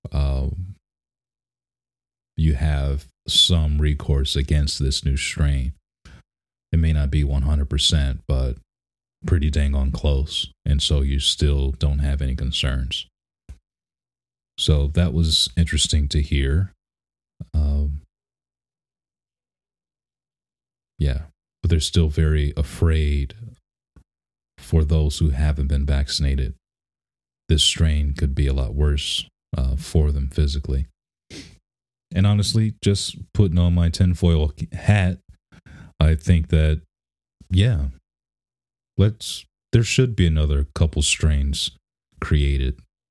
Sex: male